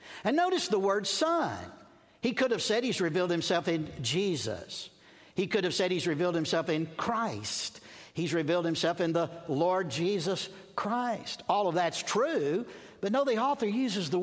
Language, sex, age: English, male, 60-79